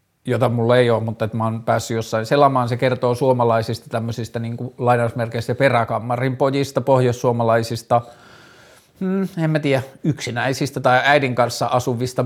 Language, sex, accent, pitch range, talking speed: Finnish, male, native, 115-135 Hz, 135 wpm